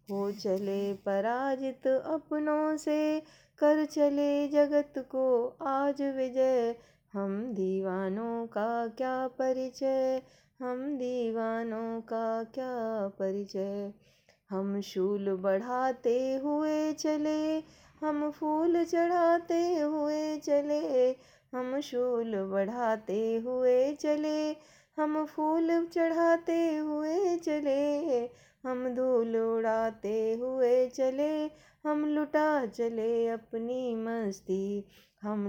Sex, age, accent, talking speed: female, 20-39, native, 90 wpm